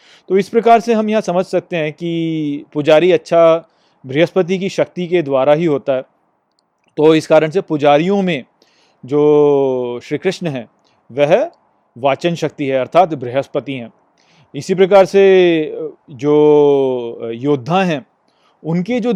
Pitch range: 140-170 Hz